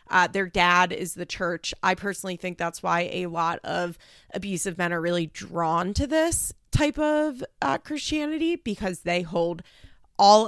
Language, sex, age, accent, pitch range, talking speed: English, female, 20-39, American, 175-215 Hz, 165 wpm